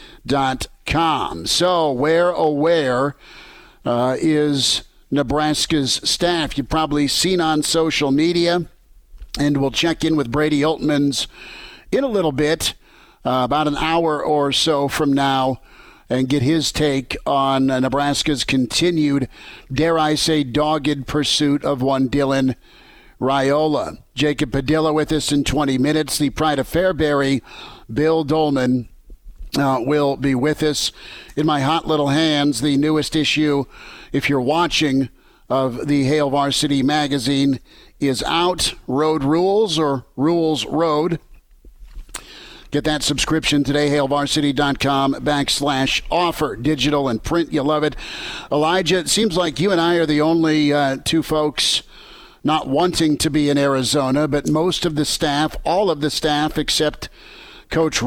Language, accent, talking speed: English, American, 140 wpm